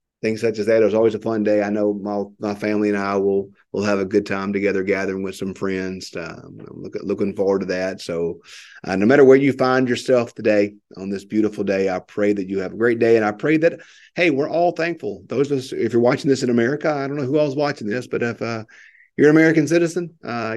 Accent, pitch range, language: American, 105-150 Hz, English